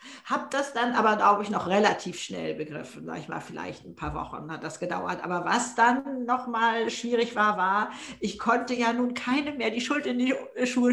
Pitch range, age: 210-260 Hz, 50-69